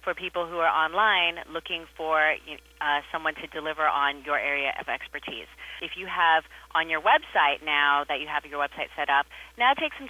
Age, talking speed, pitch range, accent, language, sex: 30-49, 195 wpm, 145-170 Hz, American, English, female